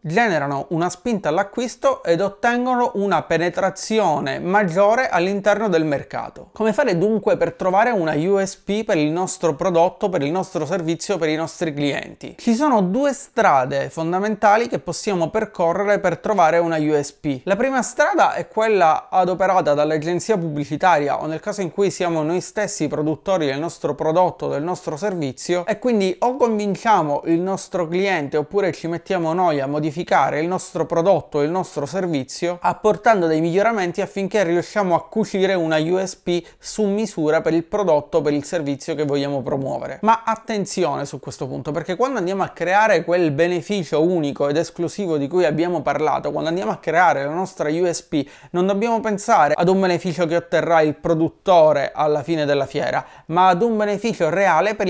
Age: 30-49